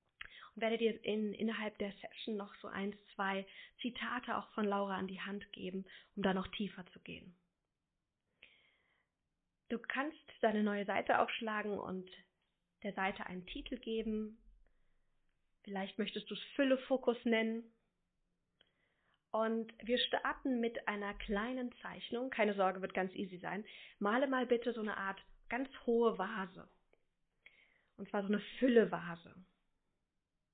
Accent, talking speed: German, 140 wpm